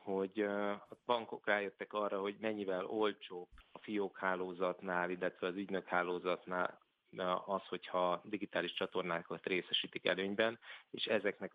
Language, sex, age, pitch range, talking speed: Hungarian, male, 30-49, 85-100 Hz, 120 wpm